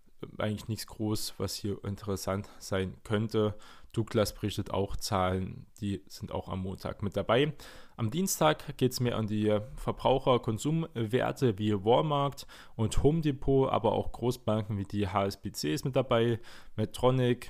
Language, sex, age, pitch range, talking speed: German, male, 20-39, 100-120 Hz, 145 wpm